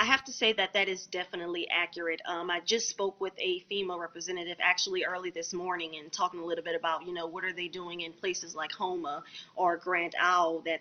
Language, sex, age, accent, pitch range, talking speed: English, female, 20-39, American, 175-200 Hz, 230 wpm